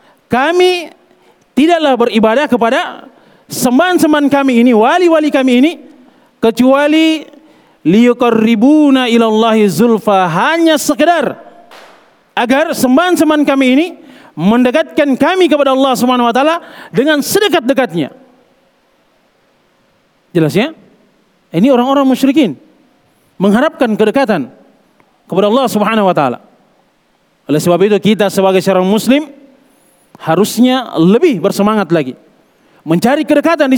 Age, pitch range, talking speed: 40-59, 220-305 Hz, 90 wpm